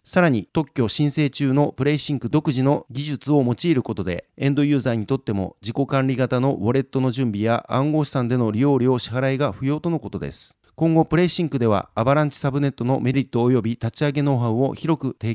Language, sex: Japanese, male